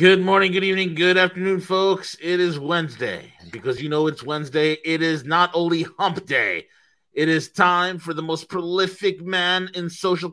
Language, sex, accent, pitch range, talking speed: English, male, American, 155-190 Hz, 180 wpm